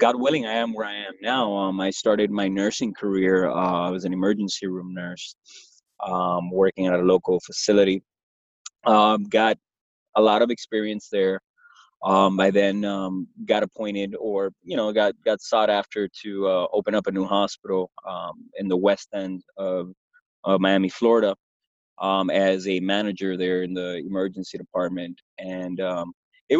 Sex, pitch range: male, 95-105 Hz